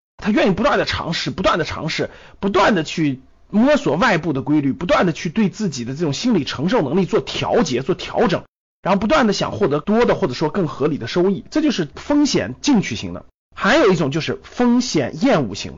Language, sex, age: Chinese, male, 30-49